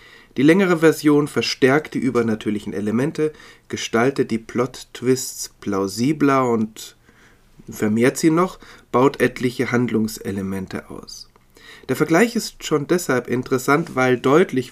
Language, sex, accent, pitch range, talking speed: German, male, German, 115-150 Hz, 110 wpm